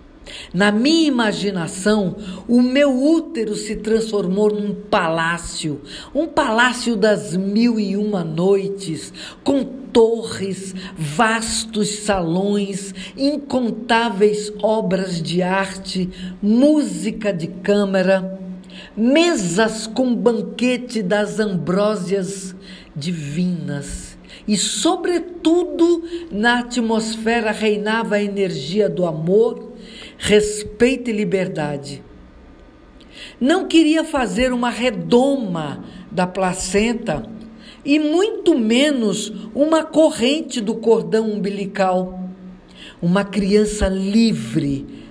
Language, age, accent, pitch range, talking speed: Portuguese, 50-69, Brazilian, 190-240 Hz, 85 wpm